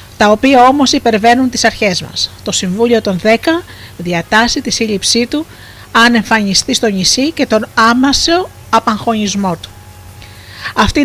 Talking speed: 135 wpm